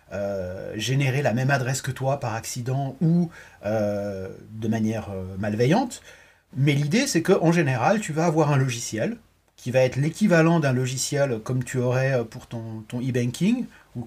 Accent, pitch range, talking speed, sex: French, 120-160 Hz, 165 wpm, male